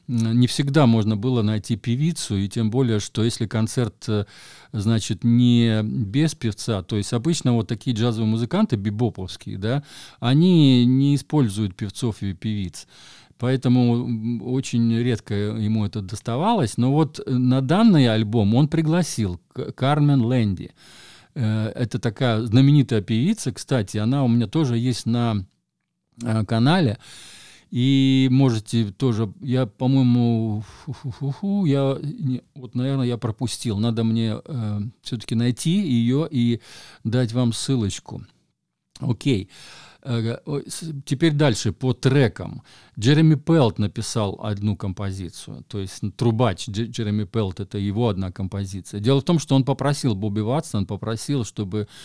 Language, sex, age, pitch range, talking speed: Russian, male, 50-69, 105-130 Hz, 130 wpm